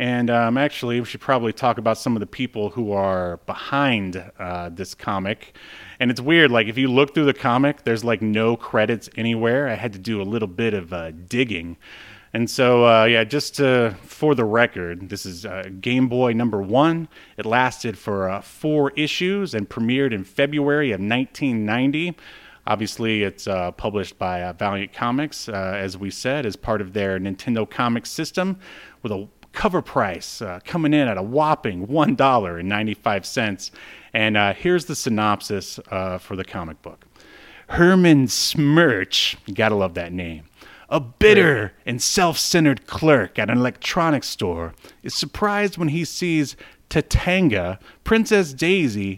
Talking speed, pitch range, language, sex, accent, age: 165 wpm, 100-145 Hz, English, male, American, 30-49